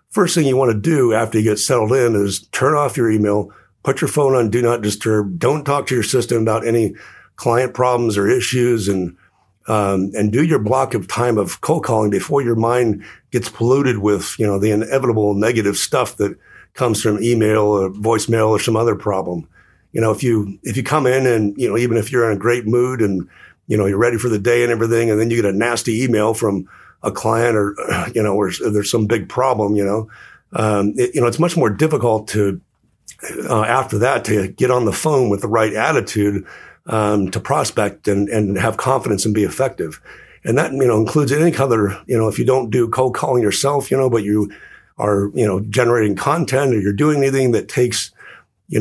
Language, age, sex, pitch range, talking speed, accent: English, 50-69, male, 105-125 Hz, 220 wpm, American